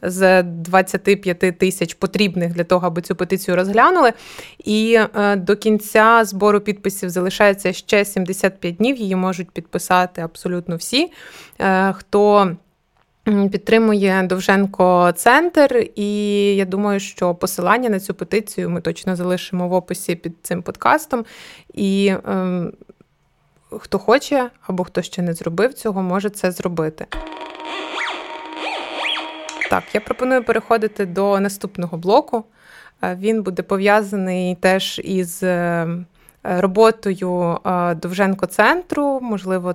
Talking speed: 110 wpm